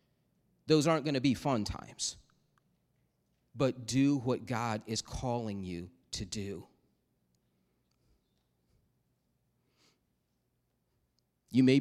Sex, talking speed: male, 90 wpm